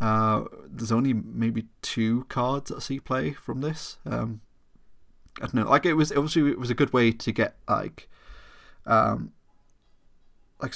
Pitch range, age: 110-125 Hz, 30-49